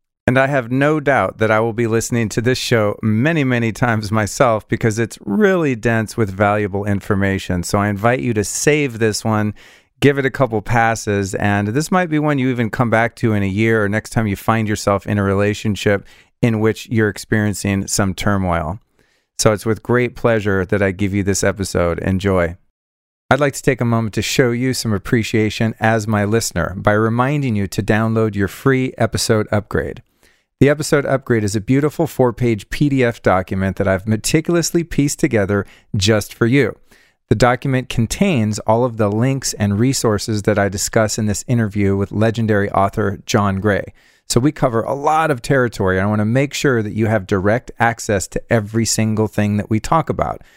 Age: 40-59